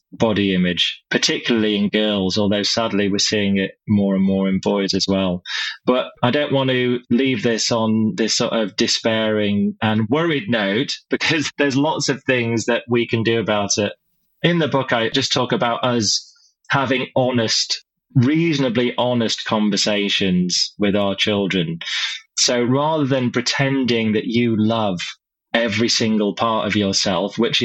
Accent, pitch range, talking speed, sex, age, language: British, 105-130 Hz, 155 wpm, male, 20-39, English